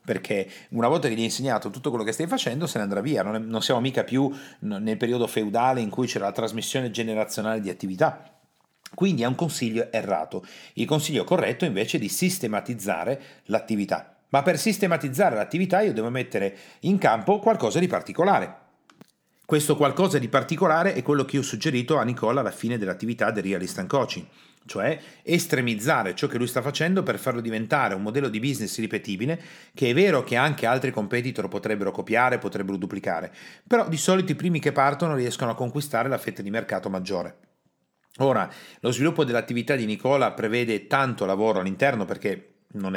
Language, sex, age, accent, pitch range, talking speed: Italian, male, 40-59, native, 110-140 Hz, 180 wpm